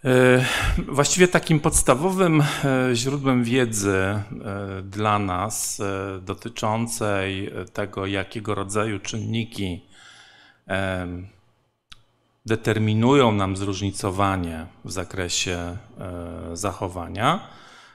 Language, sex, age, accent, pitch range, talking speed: Polish, male, 40-59, native, 100-125 Hz, 60 wpm